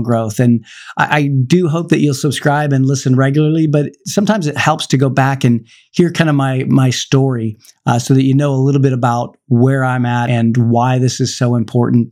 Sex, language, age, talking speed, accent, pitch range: male, English, 40-59, 220 wpm, American, 130-150 Hz